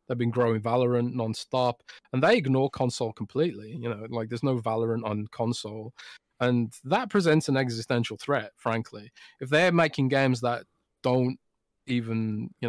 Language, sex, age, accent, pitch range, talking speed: English, male, 20-39, British, 115-130 Hz, 155 wpm